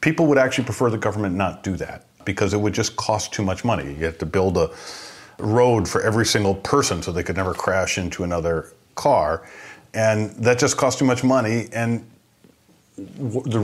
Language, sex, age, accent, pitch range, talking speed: English, male, 40-59, American, 95-120 Hz, 195 wpm